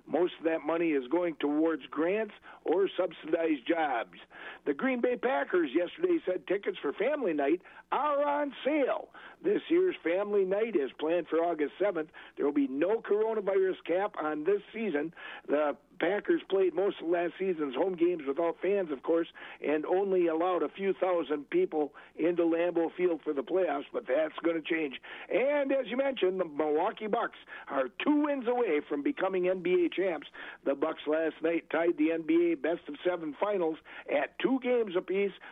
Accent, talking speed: American, 170 wpm